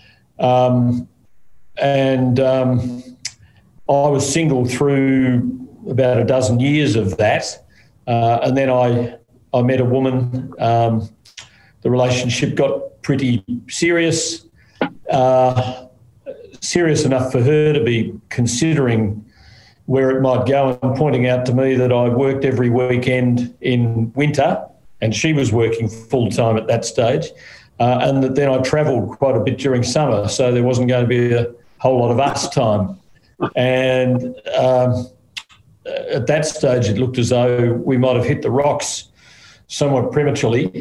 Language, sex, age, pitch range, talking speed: English, male, 50-69, 115-130 Hz, 145 wpm